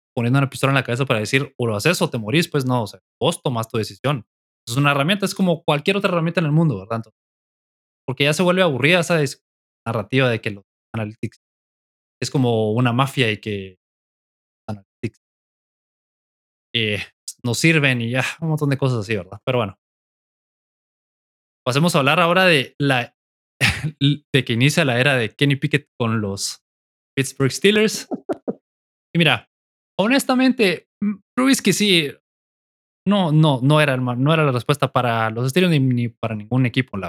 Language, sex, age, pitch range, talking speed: Spanish, male, 20-39, 115-155 Hz, 175 wpm